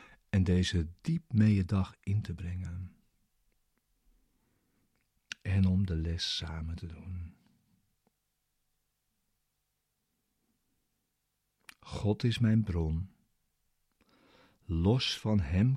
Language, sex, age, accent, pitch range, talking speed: Dutch, male, 50-69, Dutch, 90-105 Hz, 90 wpm